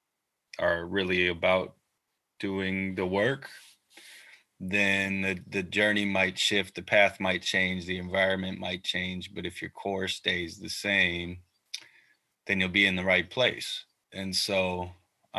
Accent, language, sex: American, English, male